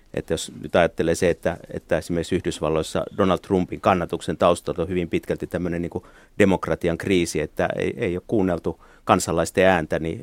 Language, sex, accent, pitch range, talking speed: Finnish, male, native, 85-95 Hz, 170 wpm